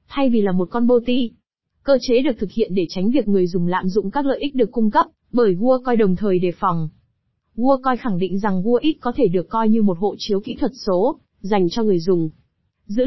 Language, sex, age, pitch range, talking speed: Vietnamese, female, 20-39, 195-245 Hz, 250 wpm